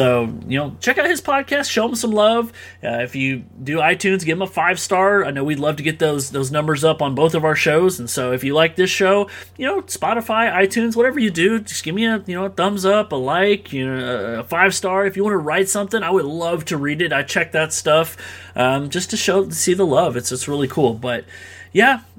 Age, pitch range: 30-49, 125-190 Hz